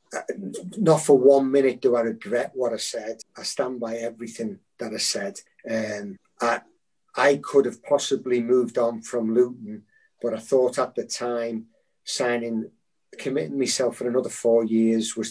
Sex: male